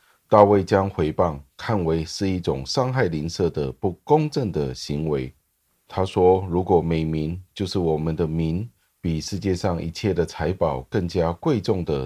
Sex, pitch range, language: male, 75-100 Hz, Chinese